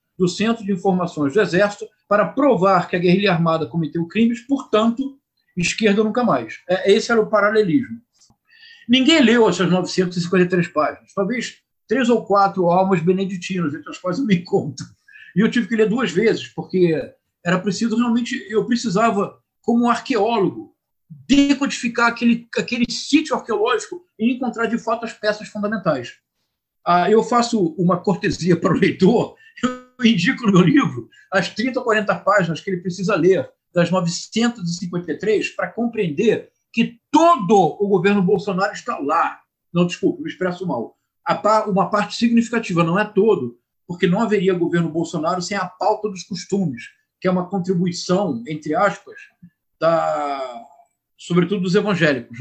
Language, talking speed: Portuguese, 145 wpm